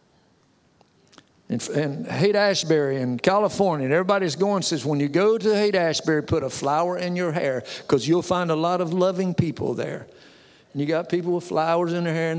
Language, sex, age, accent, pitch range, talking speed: English, male, 50-69, American, 145-180 Hz, 190 wpm